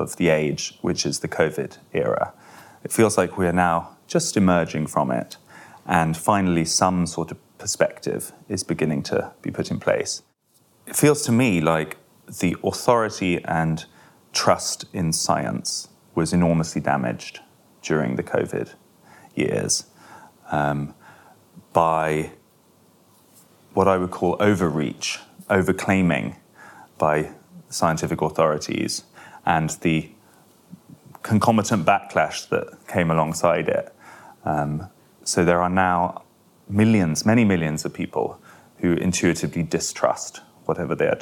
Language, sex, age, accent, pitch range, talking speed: English, male, 30-49, British, 80-95 Hz, 120 wpm